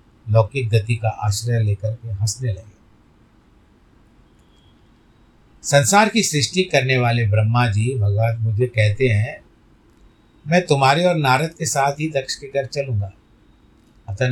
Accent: native